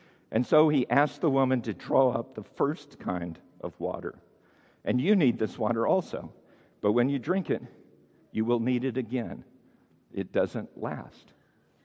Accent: American